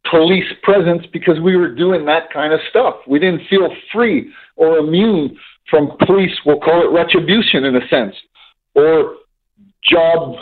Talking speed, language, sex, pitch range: 155 wpm, English, male, 145-190 Hz